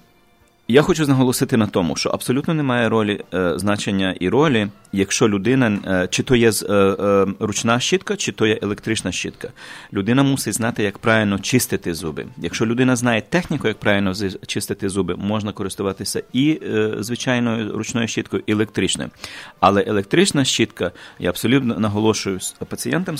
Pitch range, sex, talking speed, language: 100-125 Hz, male, 140 wpm, English